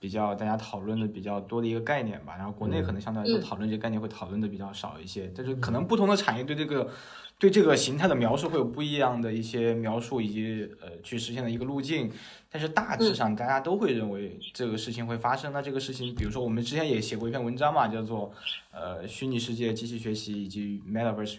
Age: 20-39